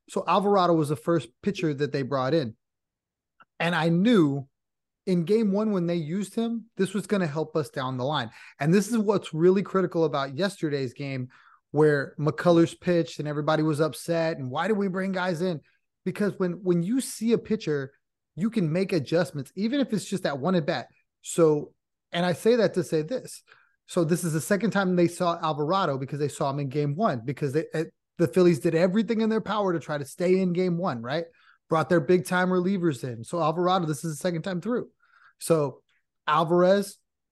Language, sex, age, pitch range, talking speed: English, male, 30-49, 155-190 Hz, 205 wpm